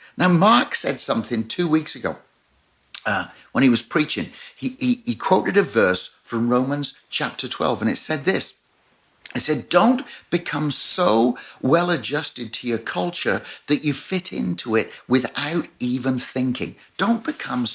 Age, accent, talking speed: 60-79, British, 155 wpm